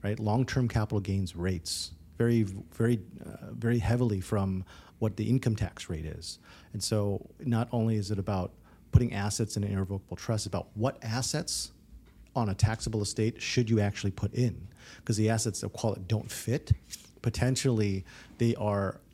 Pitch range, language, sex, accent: 100-115 Hz, English, male, American